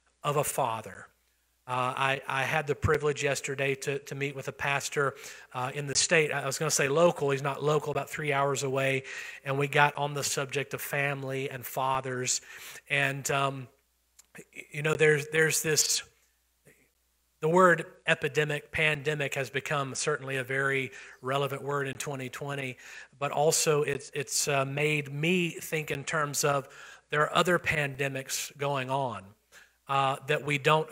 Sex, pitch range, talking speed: male, 135-155 Hz, 165 wpm